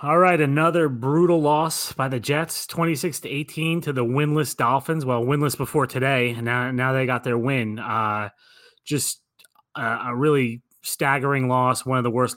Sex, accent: male, American